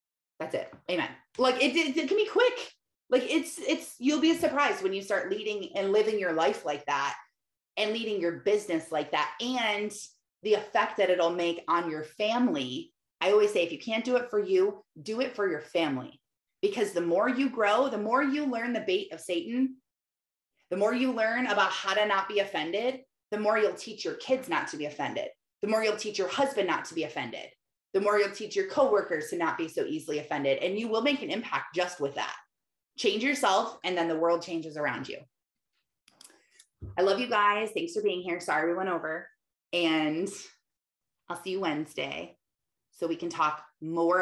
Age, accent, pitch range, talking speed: 30-49, American, 160-250 Hz, 205 wpm